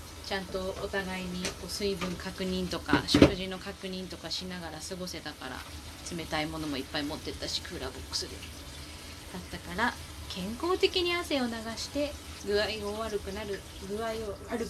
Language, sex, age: Japanese, female, 20-39